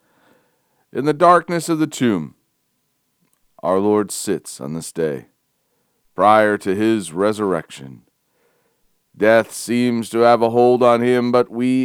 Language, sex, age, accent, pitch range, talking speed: English, male, 40-59, American, 100-125 Hz, 130 wpm